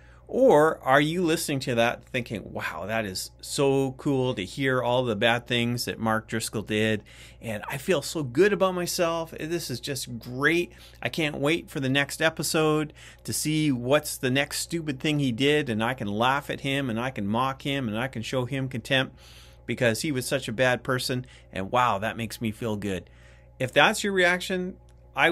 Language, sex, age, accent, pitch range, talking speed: English, male, 30-49, American, 95-140 Hz, 200 wpm